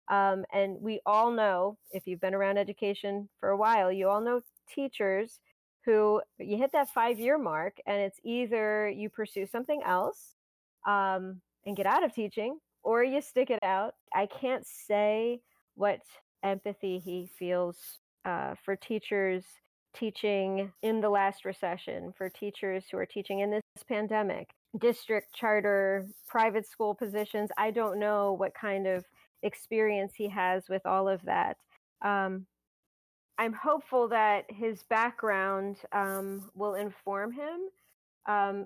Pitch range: 195-220 Hz